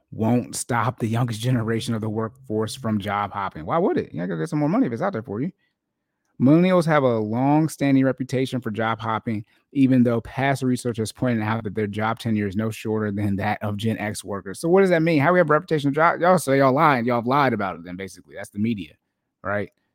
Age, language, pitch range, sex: 30-49, English, 105-135 Hz, male